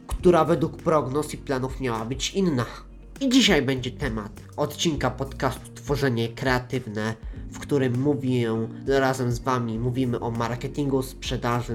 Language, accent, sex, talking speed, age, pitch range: Polish, native, male, 135 wpm, 20-39, 120-170 Hz